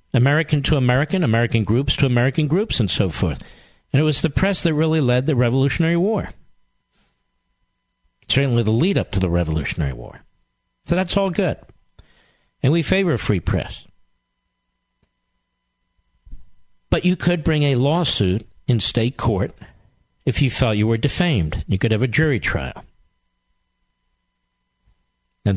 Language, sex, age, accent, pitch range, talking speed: English, male, 50-69, American, 90-140 Hz, 145 wpm